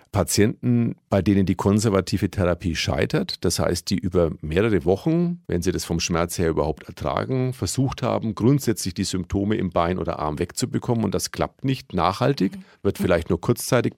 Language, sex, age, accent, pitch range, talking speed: German, male, 40-59, German, 90-115 Hz, 170 wpm